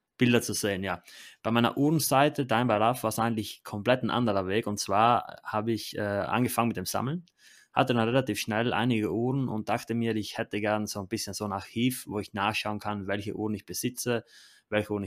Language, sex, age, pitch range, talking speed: German, male, 20-39, 100-120 Hz, 205 wpm